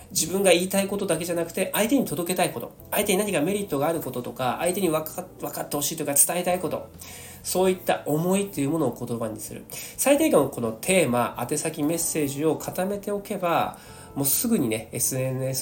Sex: male